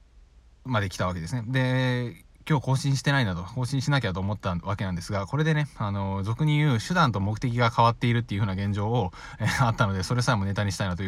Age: 20-39